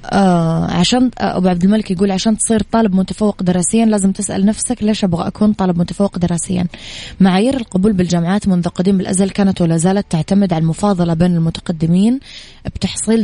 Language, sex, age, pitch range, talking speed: Arabic, female, 20-39, 175-205 Hz, 155 wpm